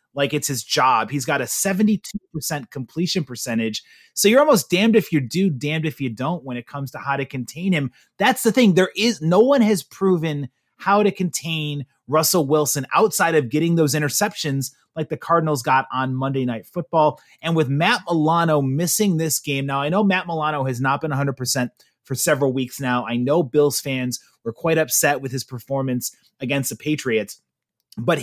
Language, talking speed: English, 190 wpm